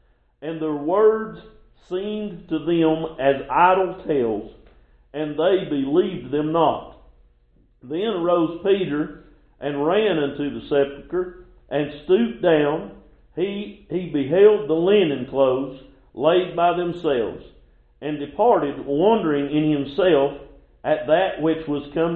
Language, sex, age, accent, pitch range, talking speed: English, male, 50-69, American, 135-180 Hz, 120 wpm